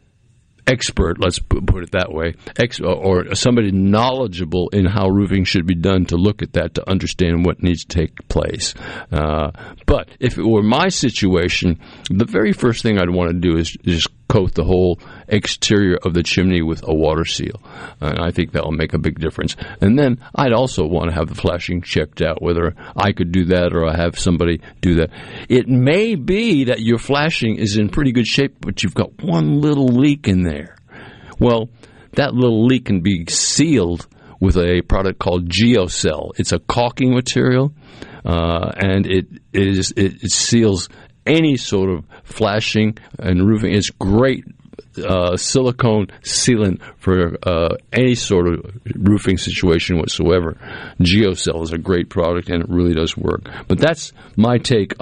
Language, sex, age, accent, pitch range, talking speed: English, male, 60-79, American, 90-120 Hz, 175 wpm